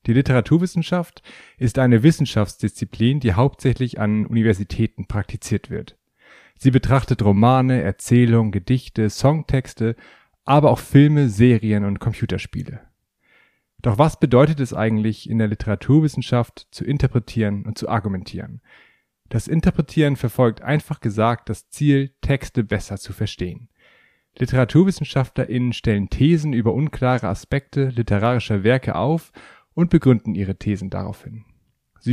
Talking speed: 115 wpm